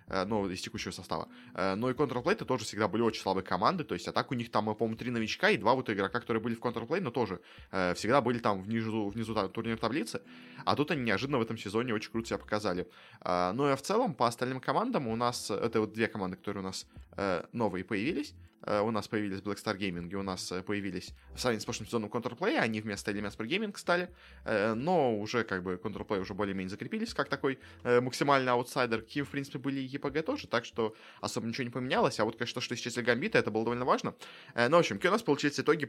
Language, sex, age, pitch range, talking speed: Russian, male, 20-39, 100-135 Hz, 225 wpm